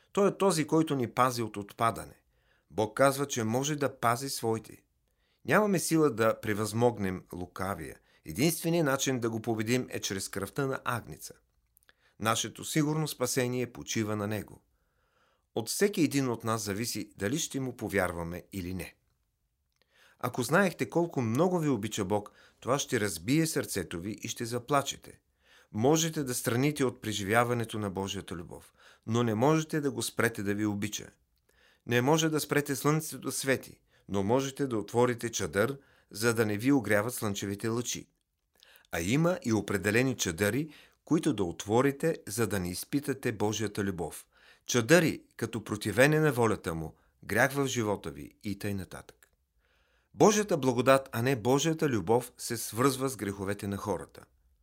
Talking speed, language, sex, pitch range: 150 wpm, Bulgarian, male, 105-140 Hz